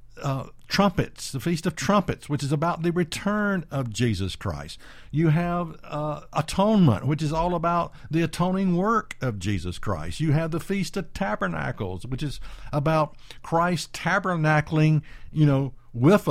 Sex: male